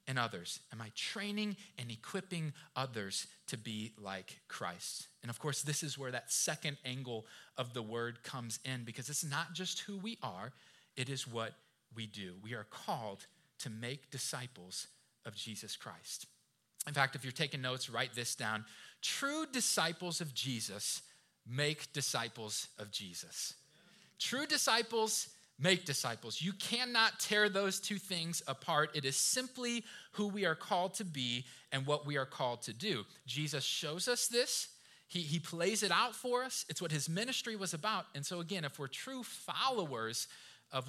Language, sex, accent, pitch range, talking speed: English, male, American, 130-195 Hz, 170 wpm